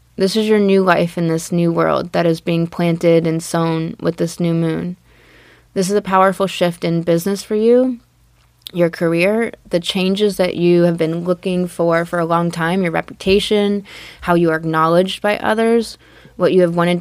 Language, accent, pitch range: English, American, 170-190 Hz